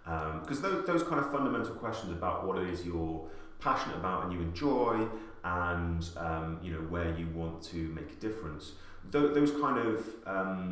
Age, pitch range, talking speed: 30-49, 80-95 Hz, 180 wpm